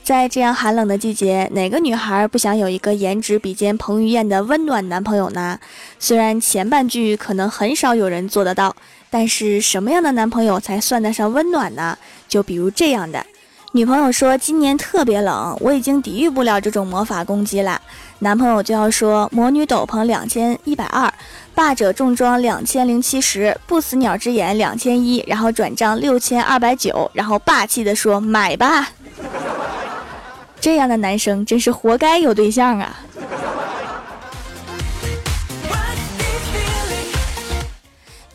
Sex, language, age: female, Chinese, 20-39